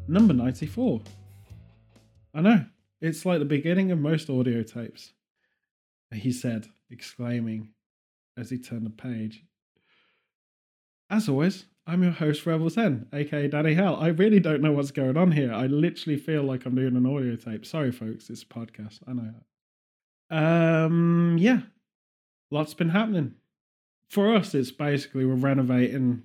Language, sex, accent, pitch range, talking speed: English, male, British, 115-165 Hz, 150 wpm